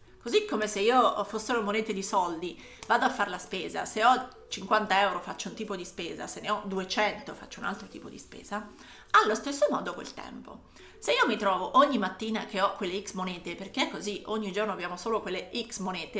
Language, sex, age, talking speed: Italian, female, 30-49, 215 wpm